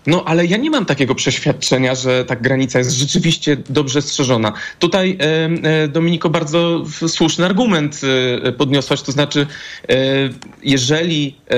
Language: Polish